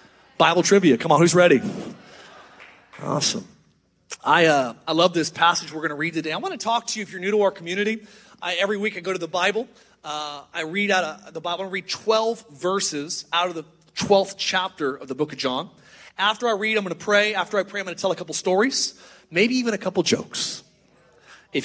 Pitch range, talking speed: 160-205 Hz, 225 wpm